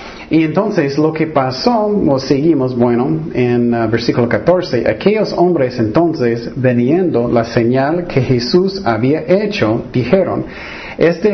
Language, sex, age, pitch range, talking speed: Spanish, male, 50-69, 115-160 Hz, 125 wpm